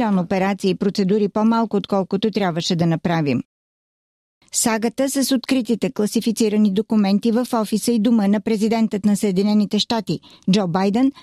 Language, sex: Bulgarian, female